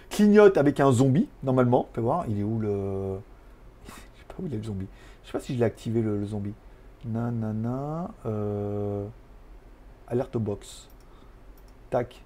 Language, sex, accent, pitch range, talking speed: French, male, French, 125-195 Hz, 180 wpm